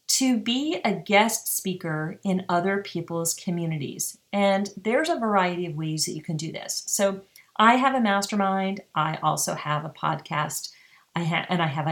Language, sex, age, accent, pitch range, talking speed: English, female, 40-59, American, 180-225 Hz, 175 wpm